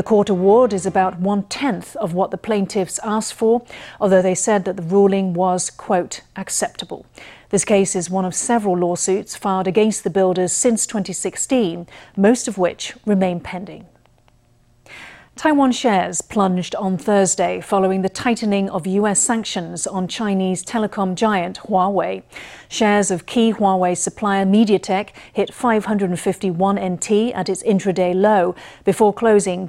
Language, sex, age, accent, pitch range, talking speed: English, female, 40-59, British, 185-215 Hz, 140 wpm